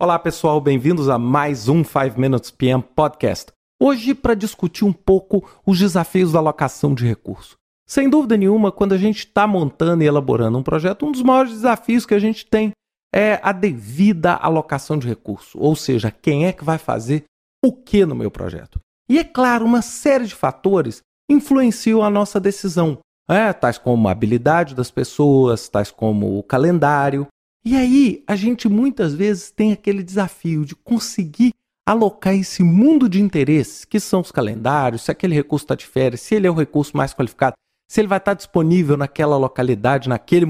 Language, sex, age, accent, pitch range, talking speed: Portuguese, male, 40-59, Brazilian, 145-230 Hz, 180 wpm